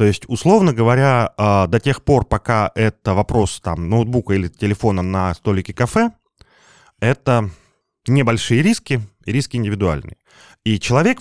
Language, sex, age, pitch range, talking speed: Russian, male, 20-39, 90-120 Hz, 130 wpm